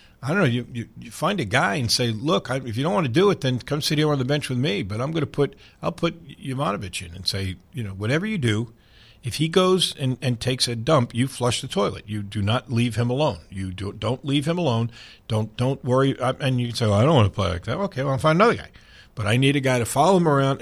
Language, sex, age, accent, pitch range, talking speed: English, male, 50-69, American, 100-145 Hz, 290 wpm